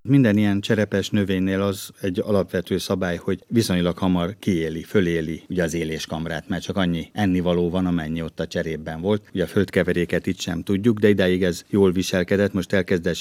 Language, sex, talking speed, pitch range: Hungarian, male, 175 wpm, 85-100 Hz